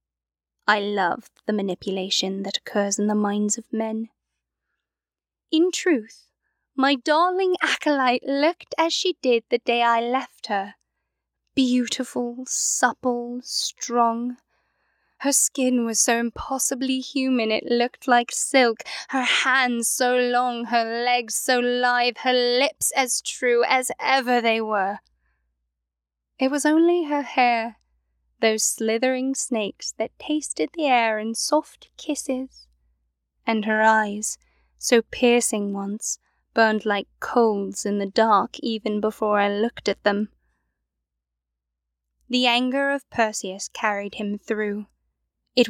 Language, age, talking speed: English, 10-29, 125 wpm